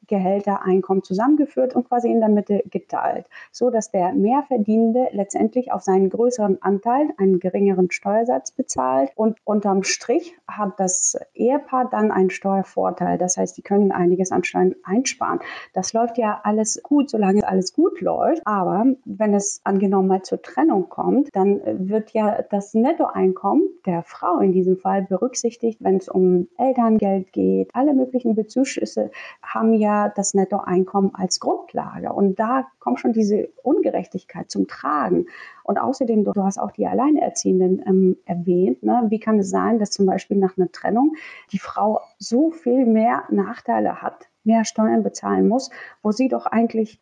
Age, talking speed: 30-49, 155 wpm